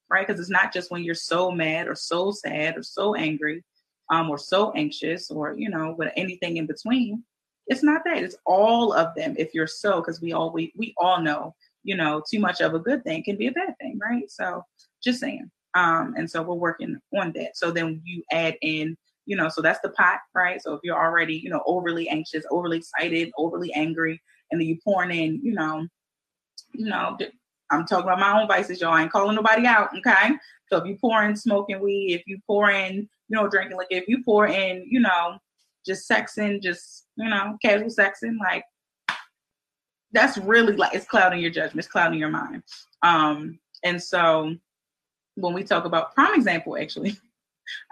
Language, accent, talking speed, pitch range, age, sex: English, American, 205 wpm, 165-210 Hz, 20-39, female